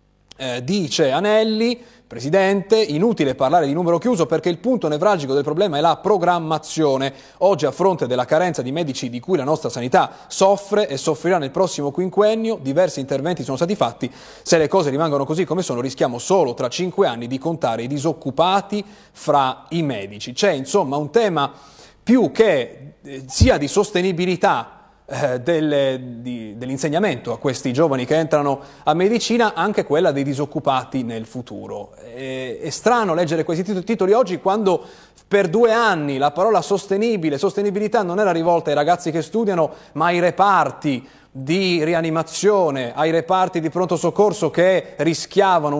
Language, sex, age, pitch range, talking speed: Italian, male, 30-49, 140-195 Hz, 150 wpm